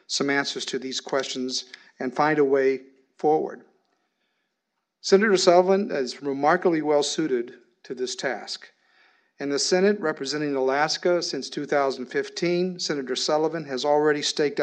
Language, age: English, 50-69